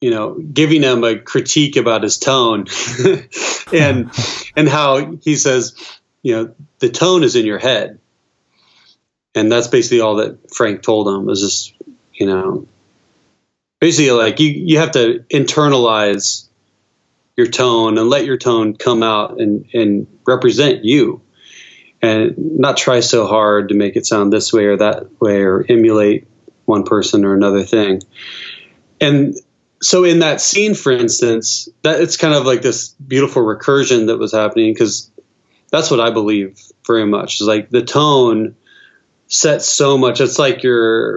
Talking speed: 160 wpm